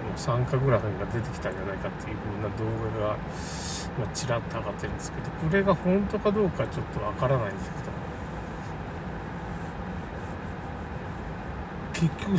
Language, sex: Japanese, male